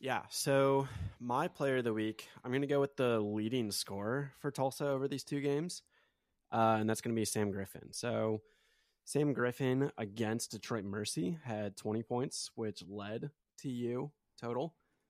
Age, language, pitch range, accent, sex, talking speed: 20-39, English, 105-125 Hz, American, male, 170 wpm